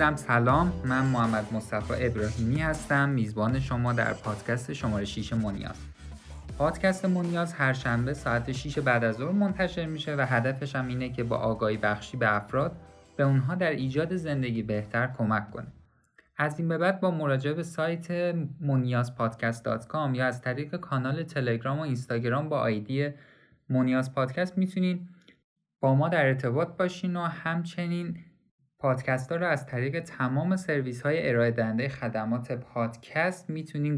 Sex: male